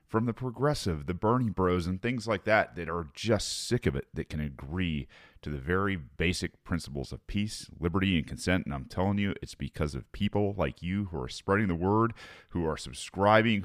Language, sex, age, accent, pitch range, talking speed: English, male, 30-49, American, 75-95 Hz, 205 wpm